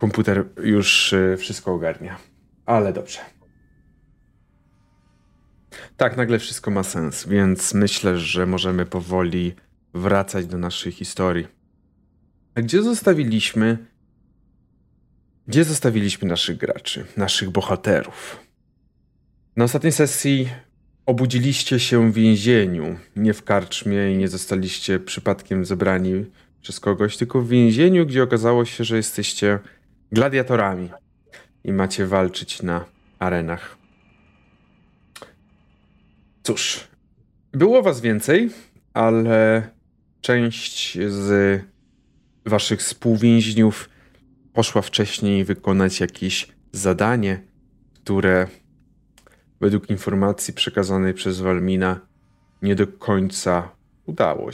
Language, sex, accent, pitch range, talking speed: Polish, male, native, 95-120 Hz, 90 wpm